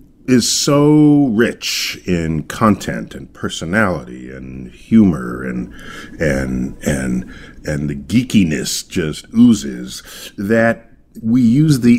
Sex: male